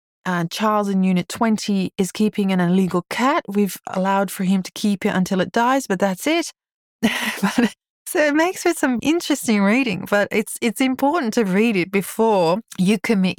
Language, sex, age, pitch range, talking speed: English, female, 30-49, 165-210 Hz, 180 wpm